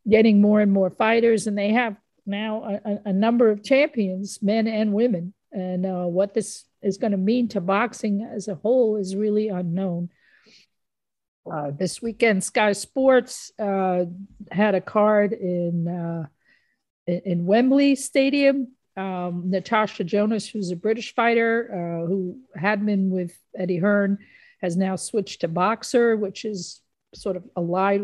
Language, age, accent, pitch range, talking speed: English, 50-69, American, 180-215 Hz, 150 wpm